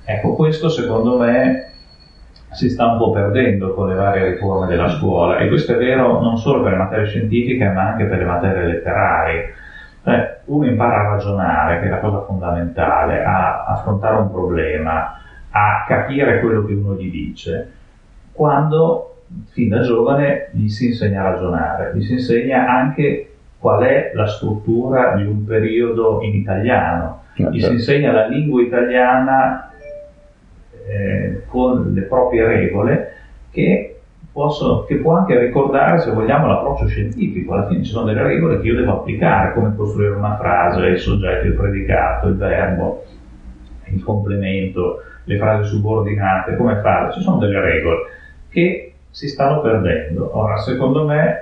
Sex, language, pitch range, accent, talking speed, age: male, Italian, 95-125 Hz, native, 155 wpm, 30-49